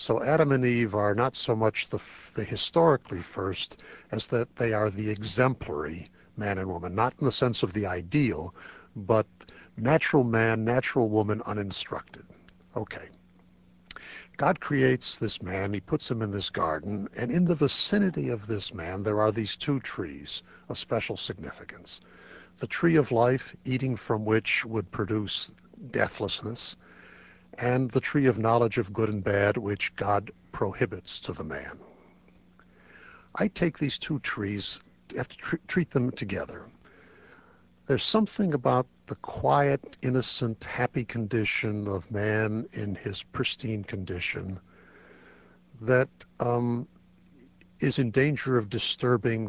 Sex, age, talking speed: male, 60-79, 145 wpm